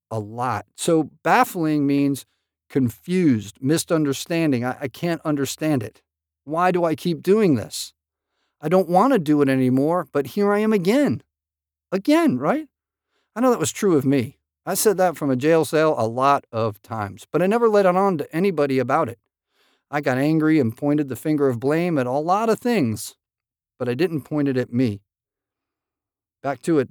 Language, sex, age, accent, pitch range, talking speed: English, male, 50-69, American, 120-180 Hz, 185 wpm